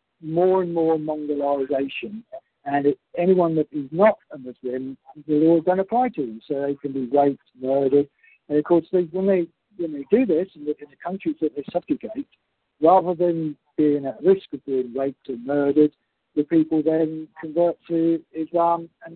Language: English